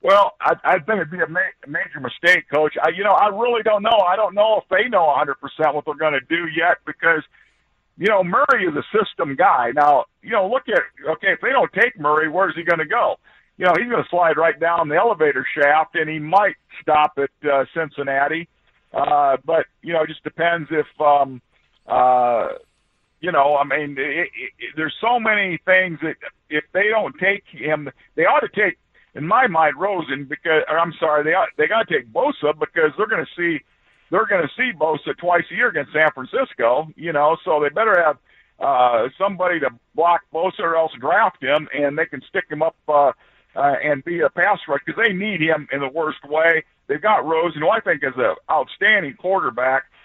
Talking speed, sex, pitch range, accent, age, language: 210 wpm, male, 150-185 Hz, American, 50-69, English